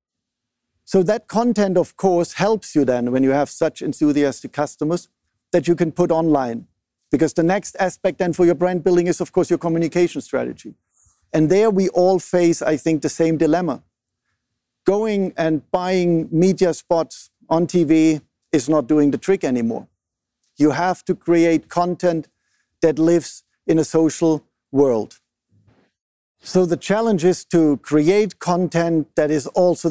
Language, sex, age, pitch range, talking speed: English, male, 50-69, 145-180 Hz, 155 wpm